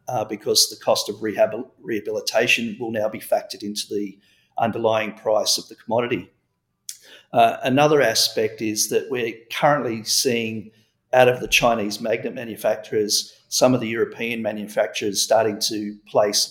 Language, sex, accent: English, male, Australian